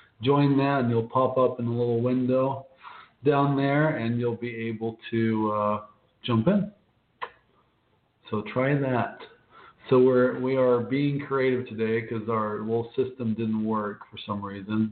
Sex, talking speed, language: male, 155 wpm, English